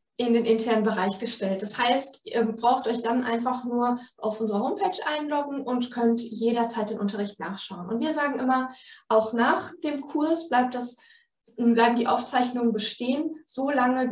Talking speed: 160 wpm